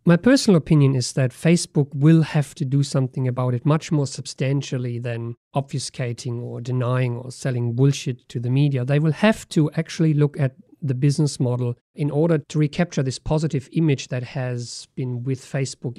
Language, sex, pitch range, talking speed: English, male, 125-150 Hz, 180 wpm